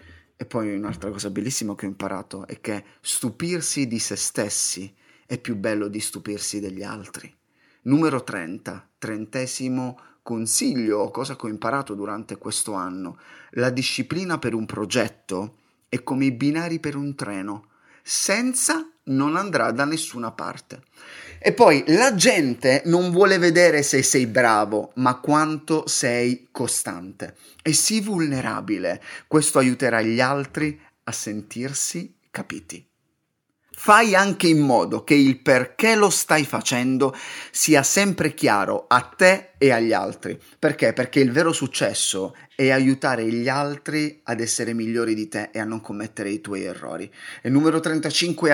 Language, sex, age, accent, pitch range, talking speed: Italian, male, 30-49, native, 110-150 Hz, 145 wpm